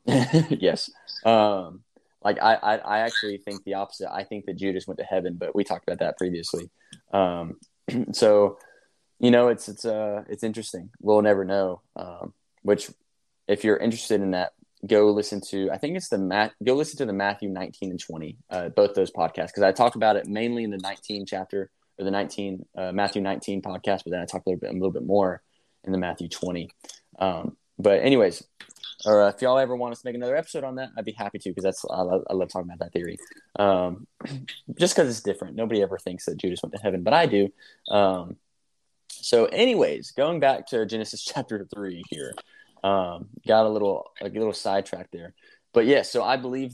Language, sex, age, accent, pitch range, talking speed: English, male, 20-39, American, 95-110 Hz, 210 wpm